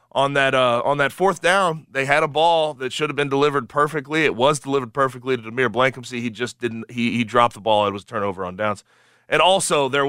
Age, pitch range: 30-49, 120-165 Hz